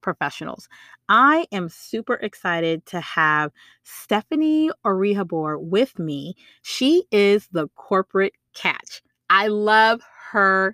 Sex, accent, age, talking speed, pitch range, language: female, American, 30-49, 105 wpm, 175-230 Hz, English